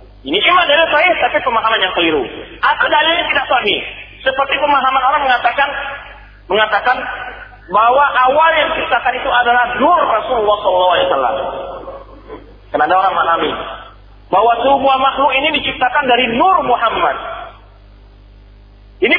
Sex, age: male, 40-59